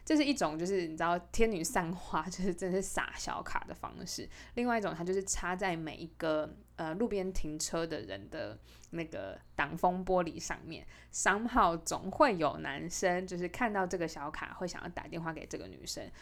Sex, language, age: female, Chinese, 20-39